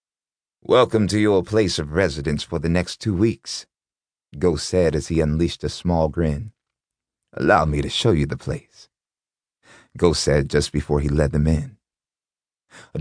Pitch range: 85-105 Hz